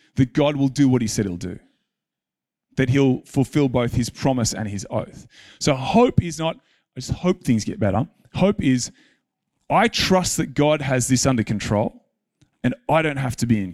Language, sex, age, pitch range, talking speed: English, male, 30-49, 115-165 Hz, 195 wpm